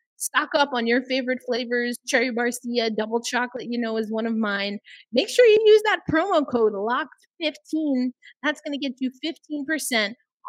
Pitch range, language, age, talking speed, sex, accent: 220-300 Hz, English, 30-49, 170 wpm, female, American